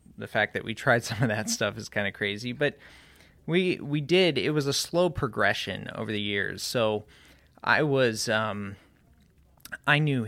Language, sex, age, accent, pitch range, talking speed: English, male, 20-39, American, 105-135 Hz, 180 wpm